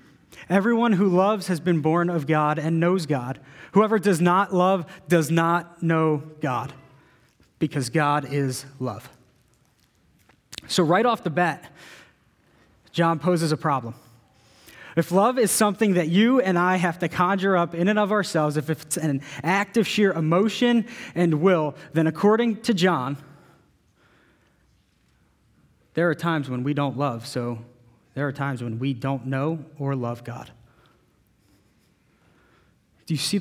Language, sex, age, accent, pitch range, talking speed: English, male, 30-49, American, 135-180 Hz, 145 wpm